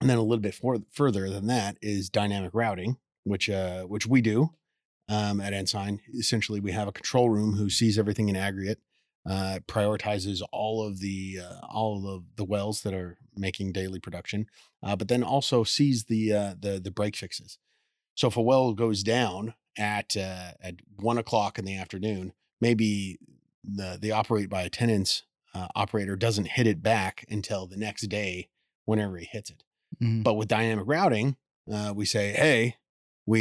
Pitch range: 100-115 Hz